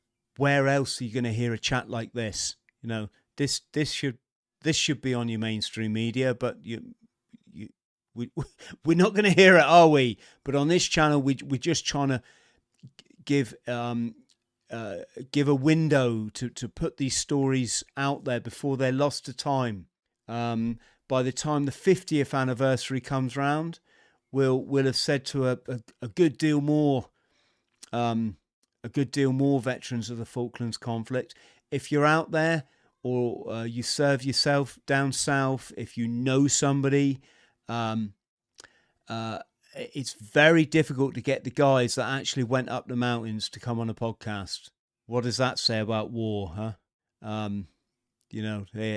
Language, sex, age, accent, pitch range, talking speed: English, male, 40-59, British, 115-140 Hz, 170 wpm